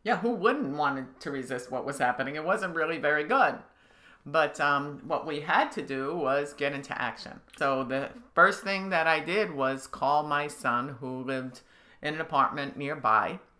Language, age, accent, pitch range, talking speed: English, 50-69, American, 135-165 Hz, 185 wpm